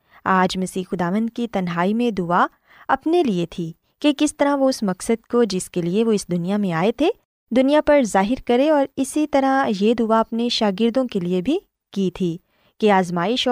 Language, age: Urdu, 20-39